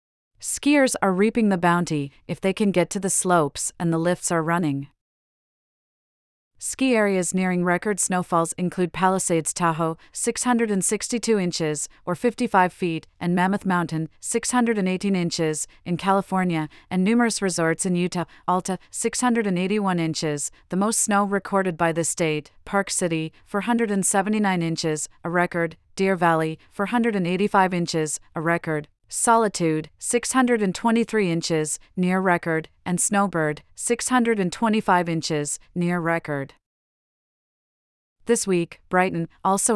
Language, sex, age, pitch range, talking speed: English, female, 30-49, 165-200 Hz, 120 wpm